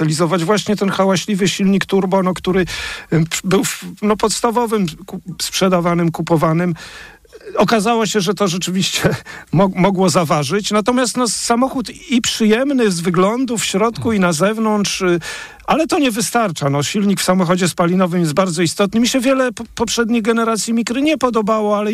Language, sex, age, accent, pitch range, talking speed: Polish, male, 50-69, native, 165-215 Hz, 135 wpm